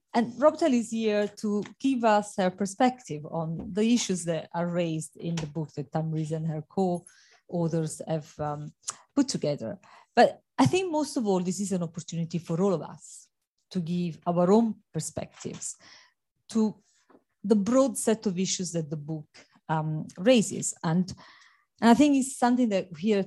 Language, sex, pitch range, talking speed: English, female, 165-210 Hz, 170 wpm